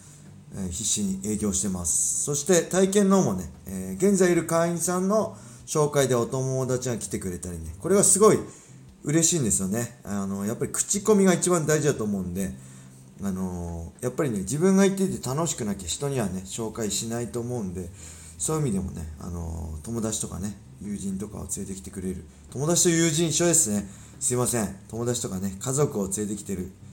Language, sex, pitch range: Japanese, male, 95-125 Hz